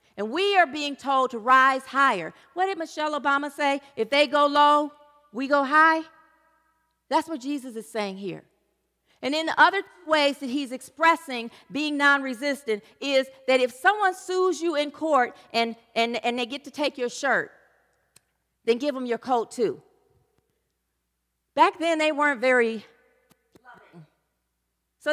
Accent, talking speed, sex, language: American, 160 wpm, female, English